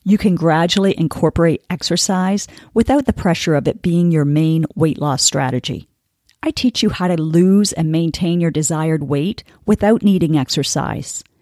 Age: 40-59